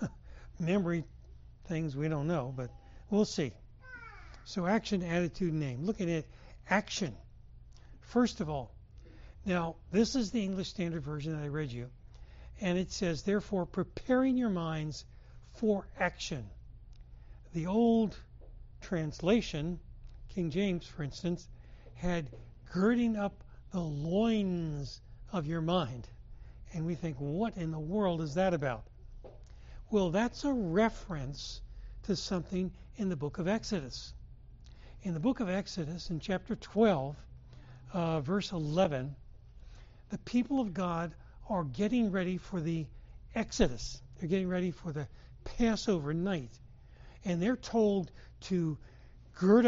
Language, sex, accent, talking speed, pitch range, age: English, male, American, 130 wpm, 145-195 Hz, 60-79